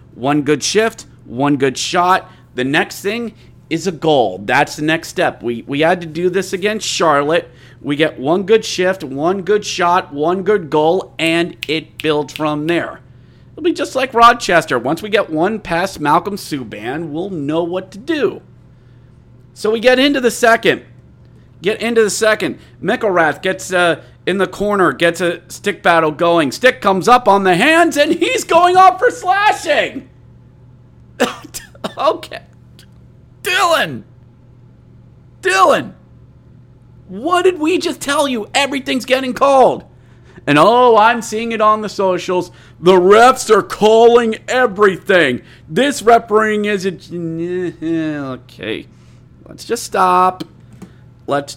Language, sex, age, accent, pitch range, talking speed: English, male, 40-59, American, 160-235 Hz, 145 wpm